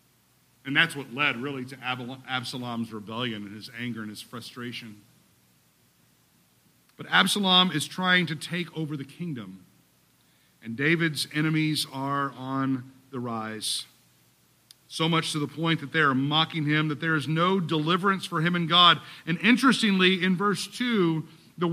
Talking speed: 150 wpm